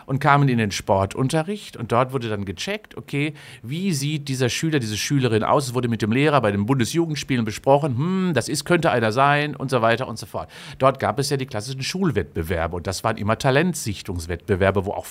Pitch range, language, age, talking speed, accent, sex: 110-150 Hz, German, 50-69, 210 wpm, German, male